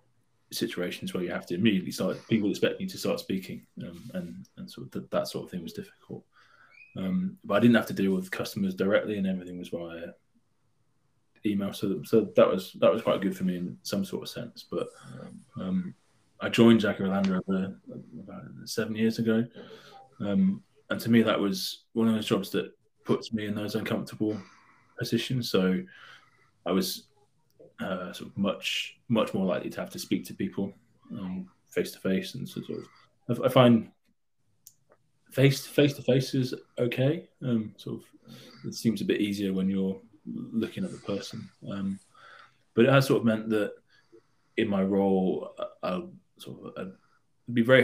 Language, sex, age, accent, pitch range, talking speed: English, male, 20-39, British, 95-125 Hz, 185 wpm